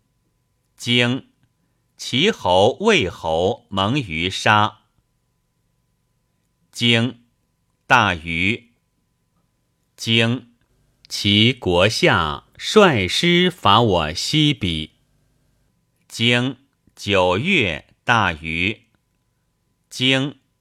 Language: Chinese